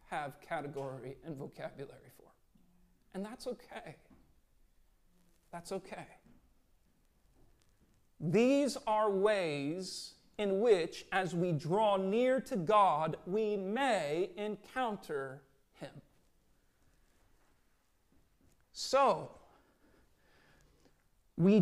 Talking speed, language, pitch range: 75 wpm, English, 190-255 Hz